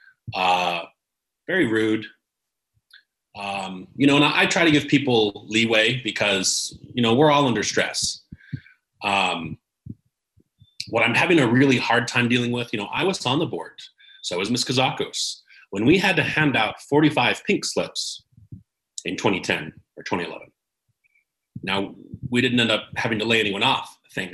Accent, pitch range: American, 105-145 Hz